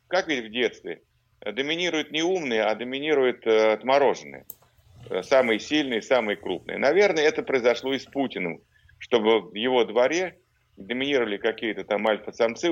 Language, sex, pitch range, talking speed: Russian, male, 110-150 Hz, 130 wpm